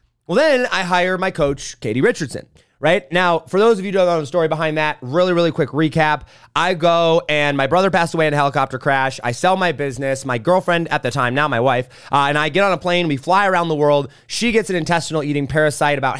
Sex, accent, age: male, American, 30-49